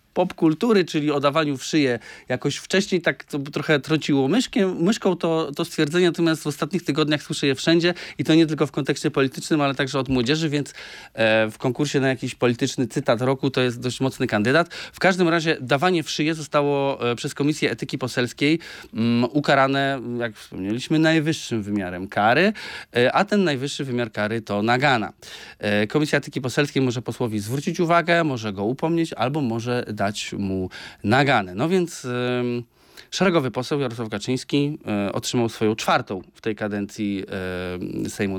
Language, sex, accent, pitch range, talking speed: Polish, male, native, 120-165 Hz, 165 wpm